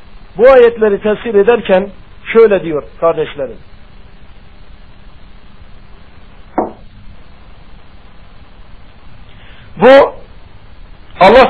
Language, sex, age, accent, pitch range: Turkish, male, 60-79, native, 190-235 Hz